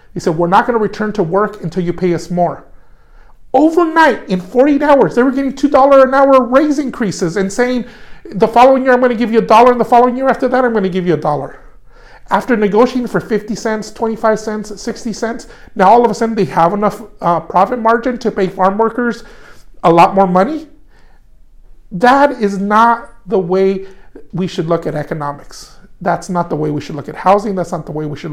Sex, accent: male, American